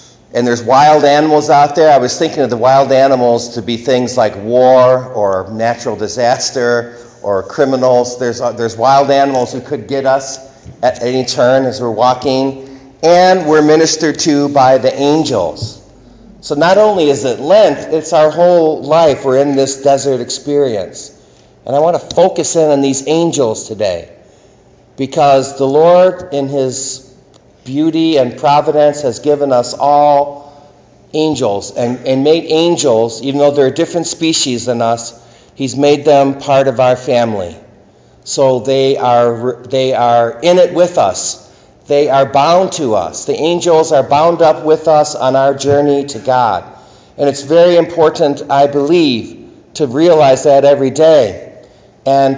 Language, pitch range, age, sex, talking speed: English, 130-155 Hz, 50-69, male, 160 wpm